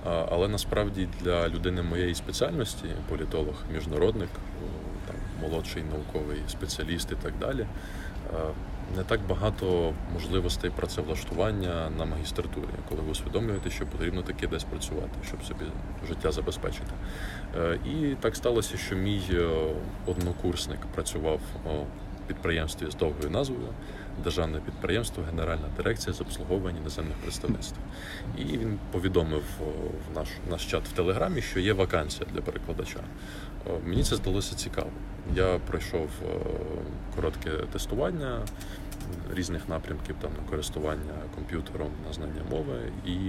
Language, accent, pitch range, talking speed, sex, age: Ukrainian, native, 80-95 Hz, 120 wpm, male, 20-39